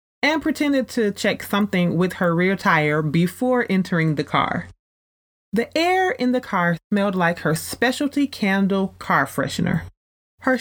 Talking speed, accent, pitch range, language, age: 145 wpm, American, 145-210 Hz, English, 30-49